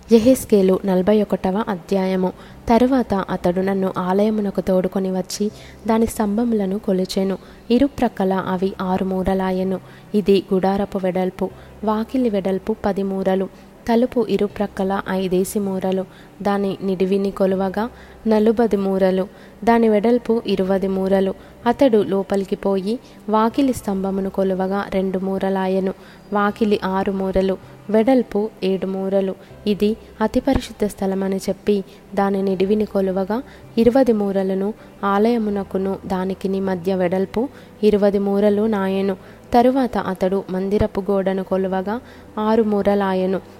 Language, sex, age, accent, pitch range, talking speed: Telugu, female, 20-39, native, 190-210 Hz, 95 wpm